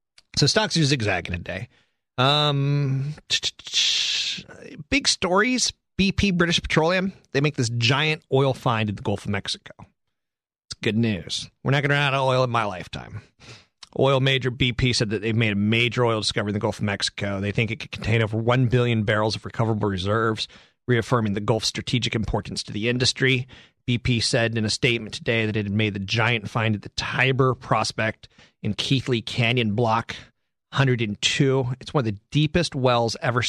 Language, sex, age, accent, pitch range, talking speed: English, male, 30-49, American, 110-135 Hz, 185 wpm